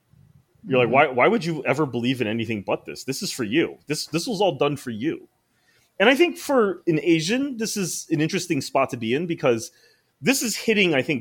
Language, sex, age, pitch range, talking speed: English, male, 30-49, 105-155 Hz, 230 wpm